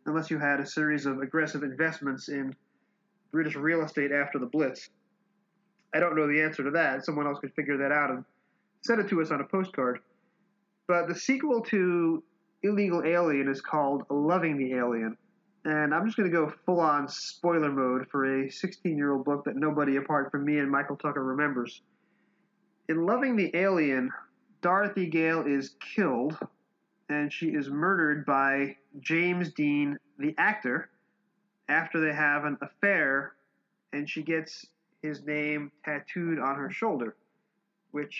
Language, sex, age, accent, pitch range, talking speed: English, male, 30-49, American, 140-180 Hz, 160 wpm